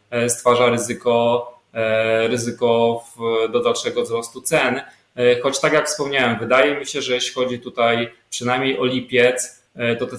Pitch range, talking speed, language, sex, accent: 115-125 Hz, 135 wpm, Polish, male, native